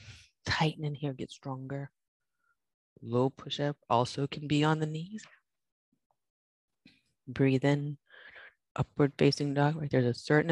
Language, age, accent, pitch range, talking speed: English, 30-49, American, 125-165 Hz, 125 wpm